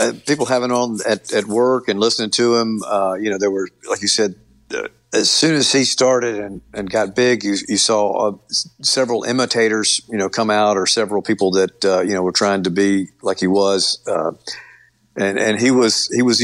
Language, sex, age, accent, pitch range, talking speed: English, male, 50-69, American, 95-115 Hz, 220 wpm